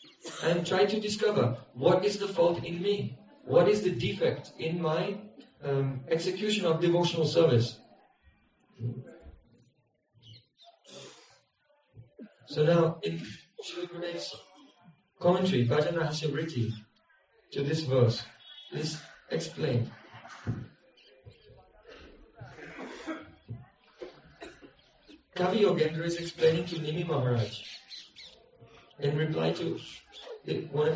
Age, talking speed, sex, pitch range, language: 50-69, 95 wpm, male, 145-185 Hz, Hindi